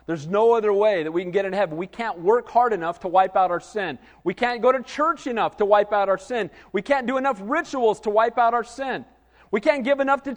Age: 40-59